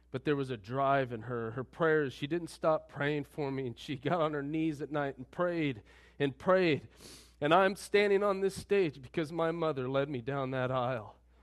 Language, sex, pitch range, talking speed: English, male, 125-165 Hz, 215 wpm